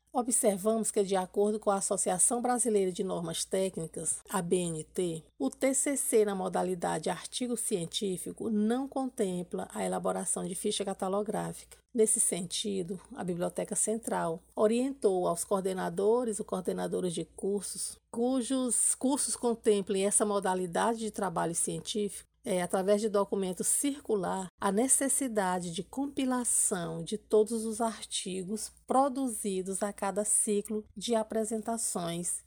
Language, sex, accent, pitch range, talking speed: Portuguese, female, Brazilian, 190-230 Hz, 120 wpm